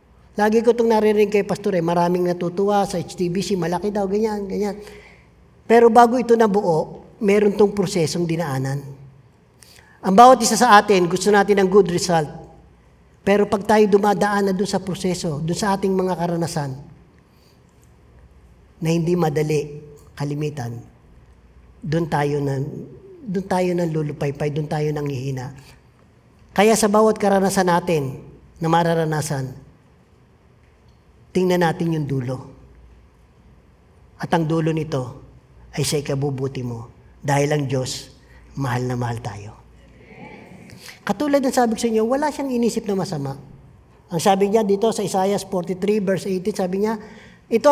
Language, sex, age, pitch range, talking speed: Filipino, male, 50-69, 145-210 Hz, 140 wpm